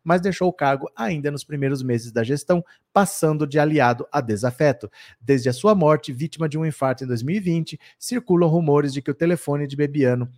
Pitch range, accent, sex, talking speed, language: 140-195 Hz, Brazilian, male, 190 wpm, Portuguese